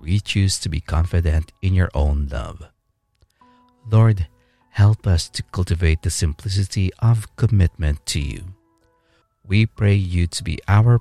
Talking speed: 140 wpm